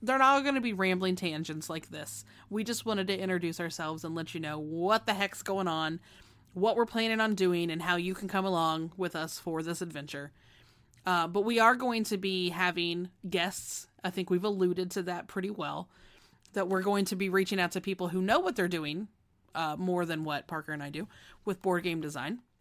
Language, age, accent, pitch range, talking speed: English, 30-49, American, 165-205 Hz, 220 wpm